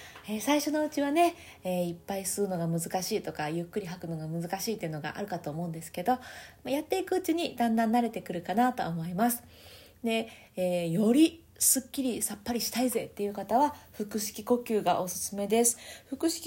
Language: Japanese